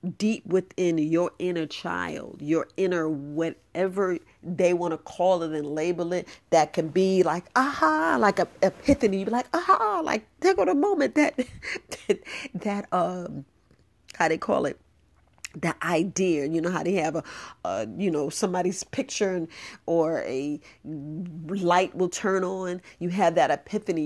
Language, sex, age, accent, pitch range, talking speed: English, female, 40-59, American, 165-205 Hz, 165 wpm